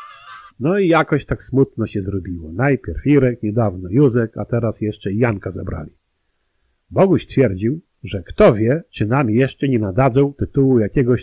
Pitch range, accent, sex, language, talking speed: 100-135 Hz, native, male, Polish, 150 wpm